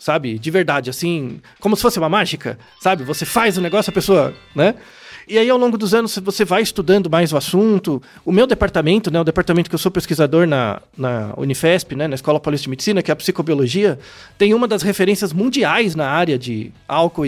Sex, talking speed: male, 210 wpm